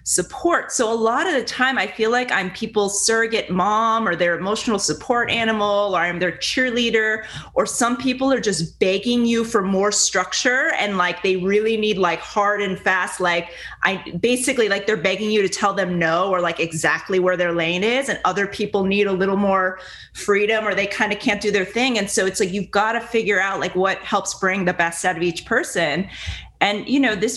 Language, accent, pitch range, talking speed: English, American, 185-220 Hz, 215 wpm